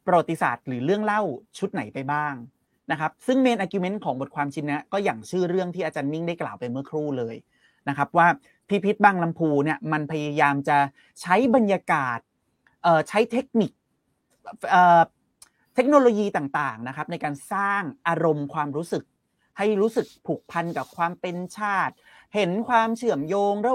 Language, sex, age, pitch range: Thai, male, 30-49, 150-200 Hz